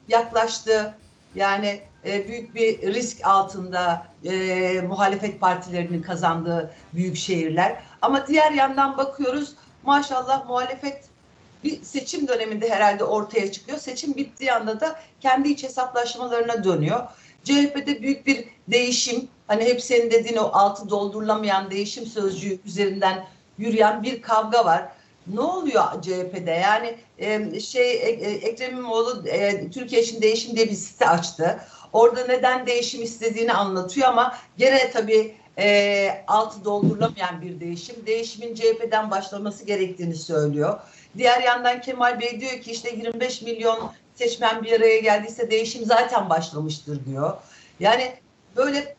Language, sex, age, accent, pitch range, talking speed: Turkish, female, 60-79, native, 195-250 Hz, 125 wpm